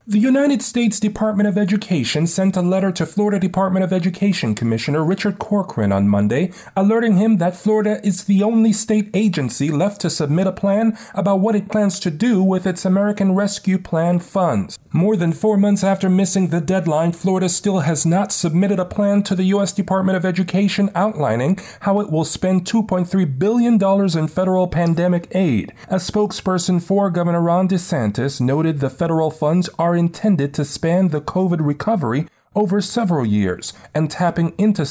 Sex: male